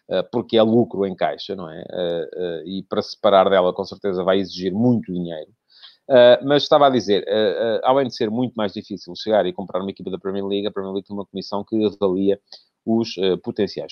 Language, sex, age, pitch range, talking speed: Portuguese, male, 30-49, 100-140 Hz, 205 wpm